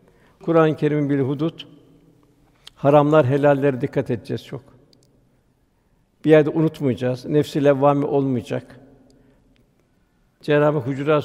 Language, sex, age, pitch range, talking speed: Turkish, male, 60-79, 135-160 Hz, 95 wpm